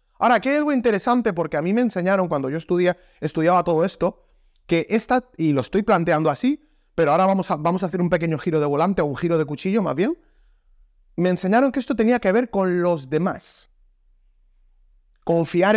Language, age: Spanish, 30-49